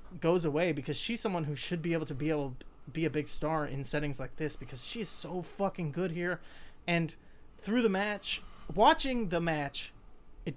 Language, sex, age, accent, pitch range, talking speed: English, male, 30-49, American, 135-180 Hz, 200 wpm